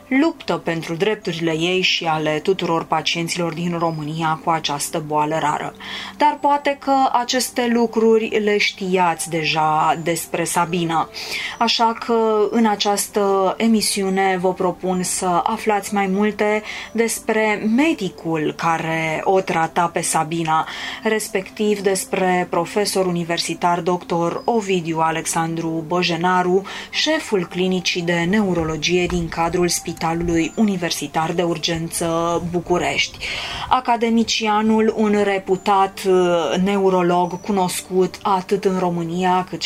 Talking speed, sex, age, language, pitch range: 105 wpm, female, 20-39, Romanian, 170-215 Hz